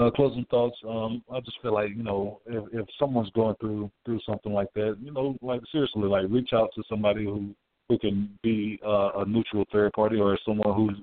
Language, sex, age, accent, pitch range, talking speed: English, male, 50-69, American, 100-115 Hz, 220 wpm